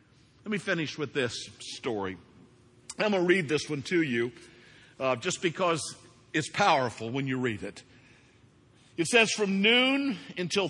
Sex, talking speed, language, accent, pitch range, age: male, 155 wpm, English, American, 115-155 Hz, 50-69